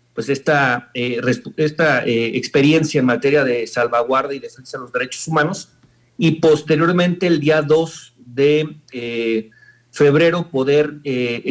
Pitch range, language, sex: 130-165 Hz, Spanish, male